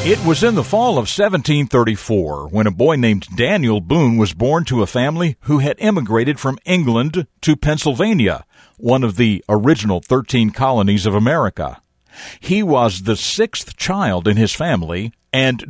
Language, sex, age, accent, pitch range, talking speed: English, male, 50-69, American, 105-140 Hz, 160 wpm